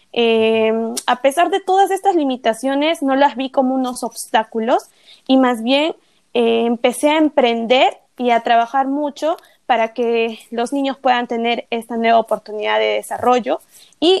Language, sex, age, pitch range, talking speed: Spanish, female, 20-39, 230-280 Hz, 150 wpm